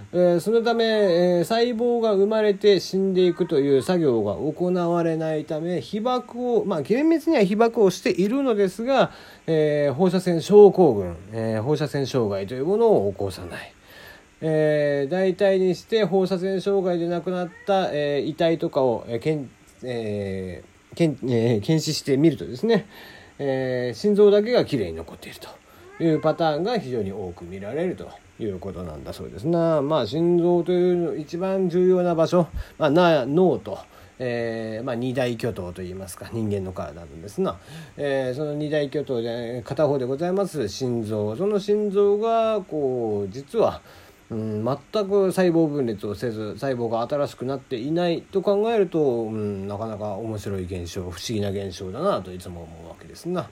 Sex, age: male, 40-59